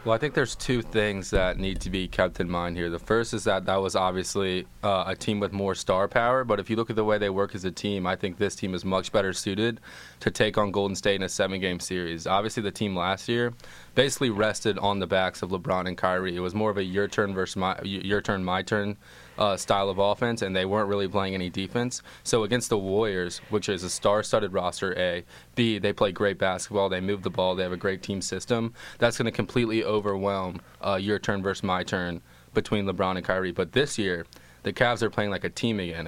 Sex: male